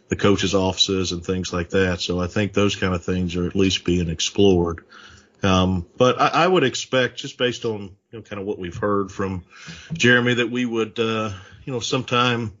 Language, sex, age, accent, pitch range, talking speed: English, male, 40-59, American, 95-110 Hz, 210 wpm